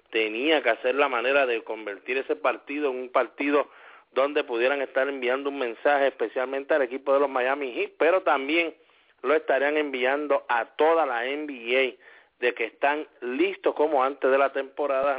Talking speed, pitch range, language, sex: 170 wpm, 125-150 Hz, English, male